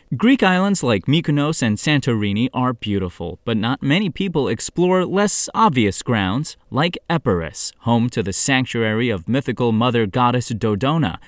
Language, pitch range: English, 110-160 Hz